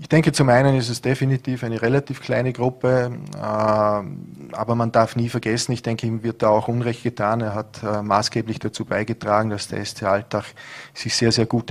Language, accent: German, Austrian